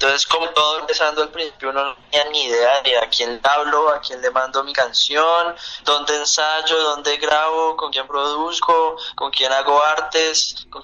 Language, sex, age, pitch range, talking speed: Spanish, male, 20-39, 125-160 Hz, 175 wpm